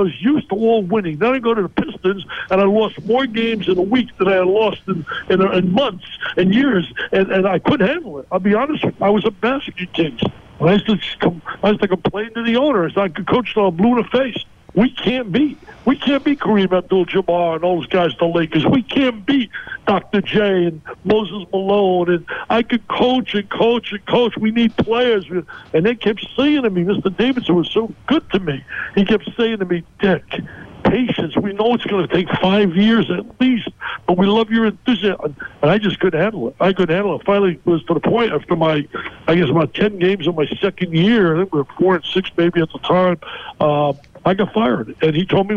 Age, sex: 60-79, male